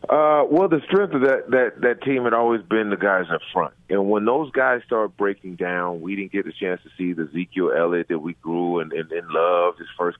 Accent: American